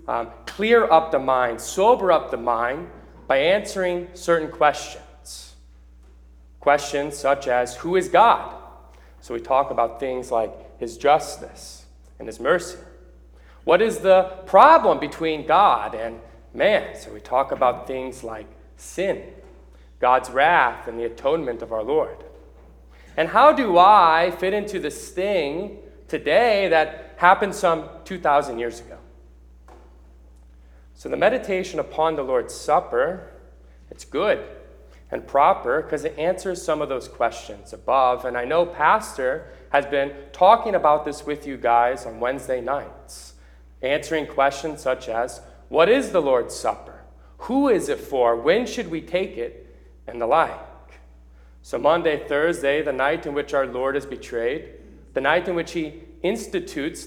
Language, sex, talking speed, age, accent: English, male, 145 wpm, 30-49, American